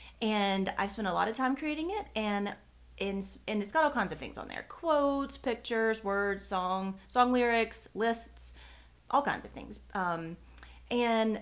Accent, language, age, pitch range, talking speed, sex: American, English, 30-49, 185-250 Hz, 175 wpm, female